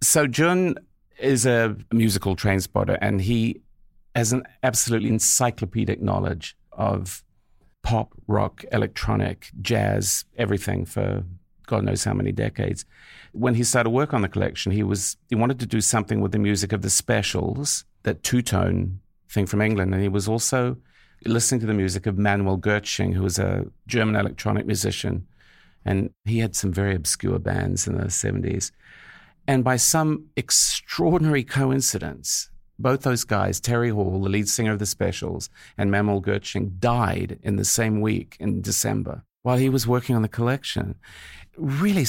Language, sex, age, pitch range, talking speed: English, male, 50-69, 100-120 Hz, 160 wpm